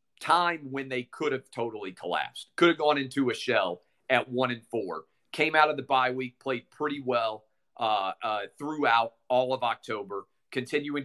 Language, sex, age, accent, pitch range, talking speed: English, male, 40-59, American, 120-135 Hz, 180 wpm